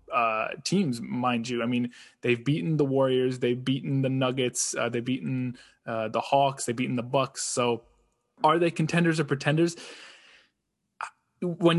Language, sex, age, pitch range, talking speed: English, male, 20-39, 120-150 Hz, 160 wpm